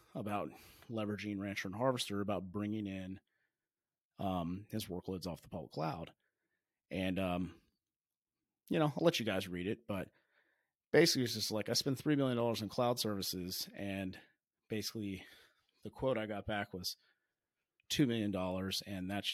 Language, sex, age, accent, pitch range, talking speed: English, male, 30-49, American, 95-115 Hz, 150 wpm